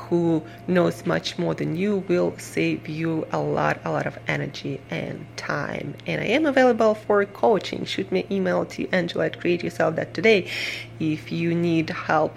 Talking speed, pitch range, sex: 180 wpm, 155-185 Hz, female